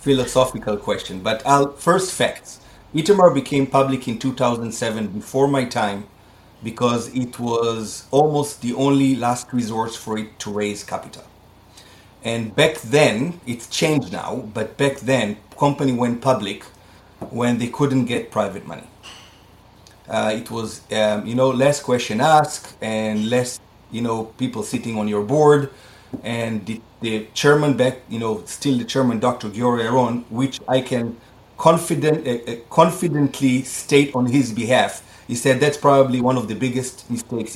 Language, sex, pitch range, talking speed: English, male, 110-135 Hz, 150 wpm